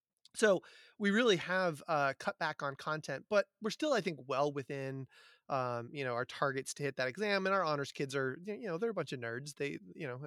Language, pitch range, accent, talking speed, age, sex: English, 125-155 Hz, American, 235 wpm, 30-49, male